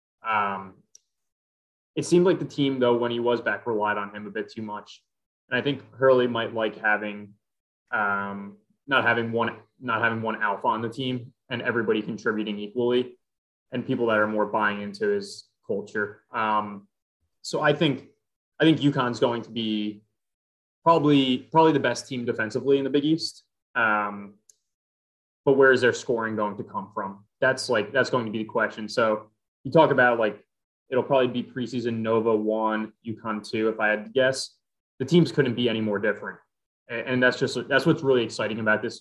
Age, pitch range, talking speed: 20-39, 105-125 Hz, 190 wpm